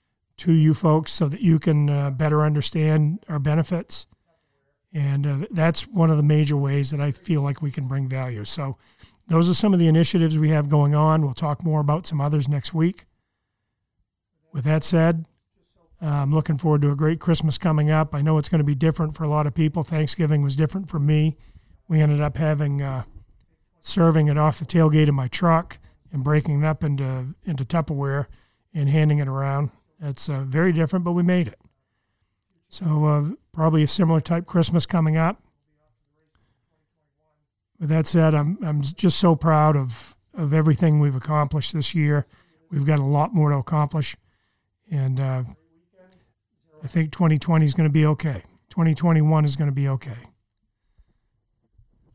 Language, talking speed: English, 180 wpm